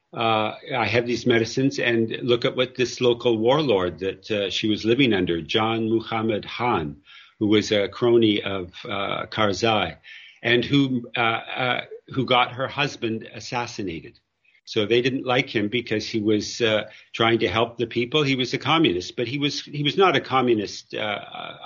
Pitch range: 110-135 Hz